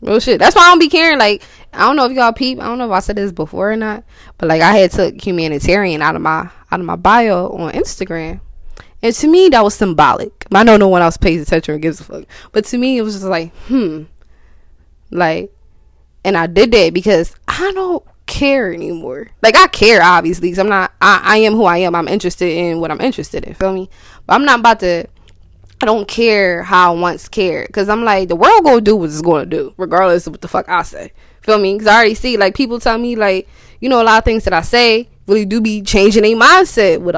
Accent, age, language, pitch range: American, 10-29, English, 175-235 Hz